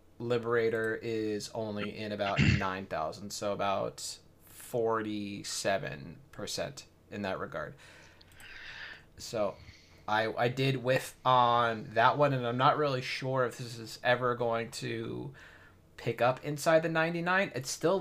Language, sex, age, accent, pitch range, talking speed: English, male, 20-39, American, 110-125 Hz, 135 wpm